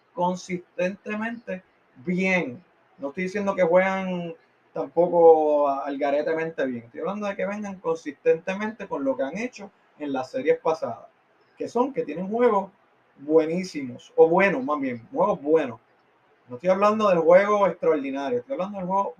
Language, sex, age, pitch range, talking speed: Spanish, male, 30-49, 150-225 Hz, 145 wpm